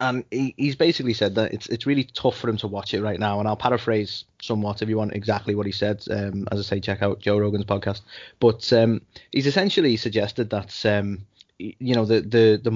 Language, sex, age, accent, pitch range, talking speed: English, male, 20-39, British, 105-120 Hz, 225 wpm